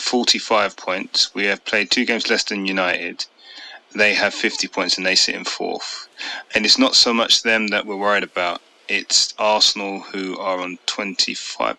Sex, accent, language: male, British, English